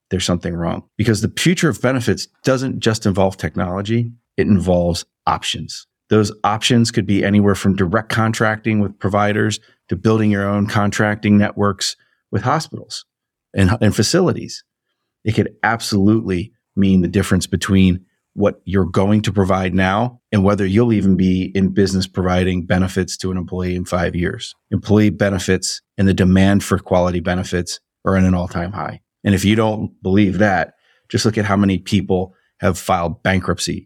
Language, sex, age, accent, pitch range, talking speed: English, male, 30-49, American, 95-105 Hz, 165 wpm